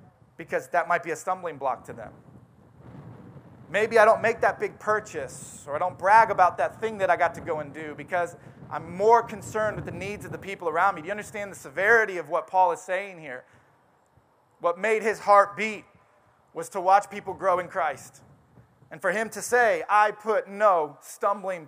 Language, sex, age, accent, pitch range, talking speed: English, male, 30-49, American, 170-225 Hz, 205 wpm